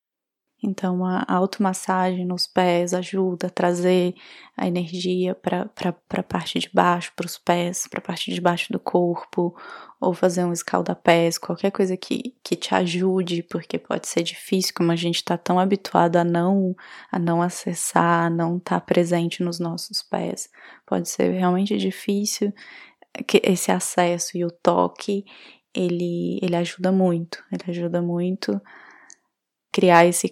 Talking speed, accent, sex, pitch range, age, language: 145 wpm, Brazilian, female, 175-190 Hz, 20-39, Portuguese